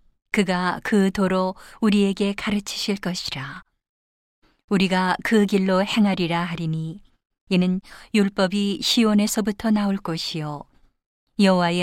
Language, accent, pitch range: Korean, native, 175-200 Hz